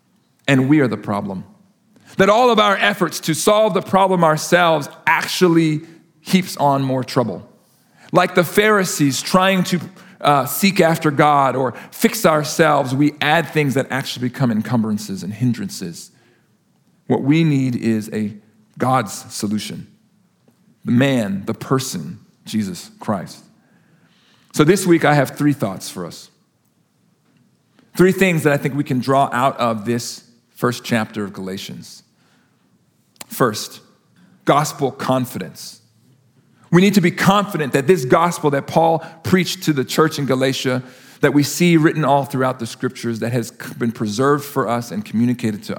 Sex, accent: male, American